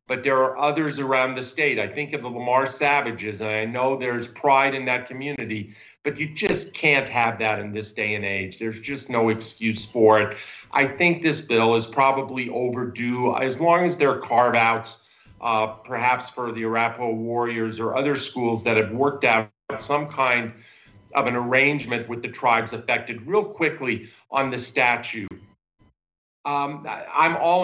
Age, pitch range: 50-69, 115-135 Hz